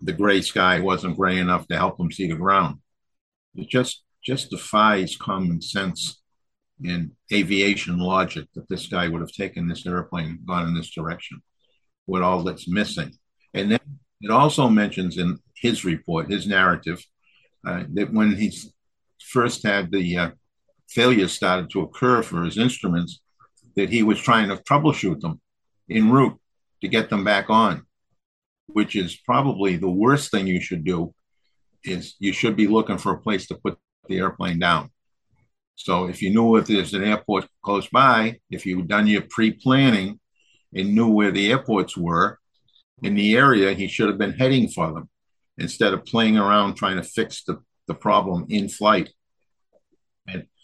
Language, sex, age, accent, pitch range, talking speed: English, male, 50-69, American, 90-115 Hz, 170 wpm